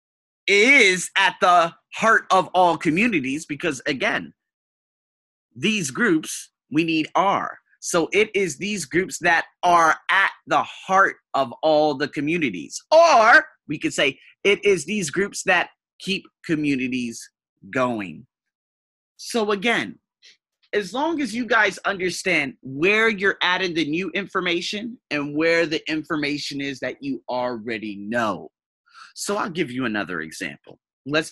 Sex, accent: male, American